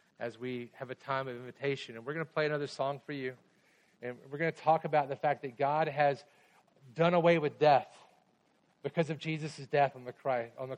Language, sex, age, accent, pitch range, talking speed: English, male, 40-59, American, 125-160 Hz, 210 wpm